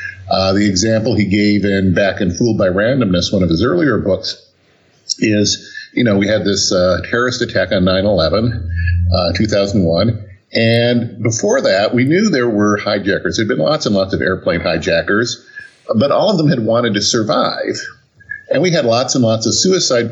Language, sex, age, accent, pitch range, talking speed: English, male, 50-69, American, 100-130 Hz, 180 wpm